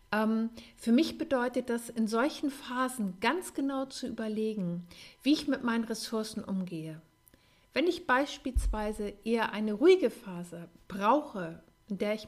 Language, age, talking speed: German, 50-69, 135 wpm